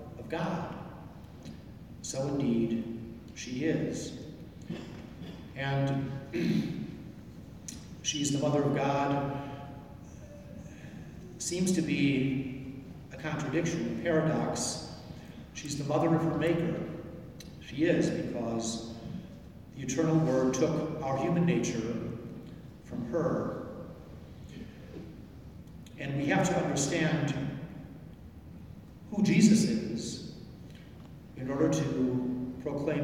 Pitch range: 130-170 Hz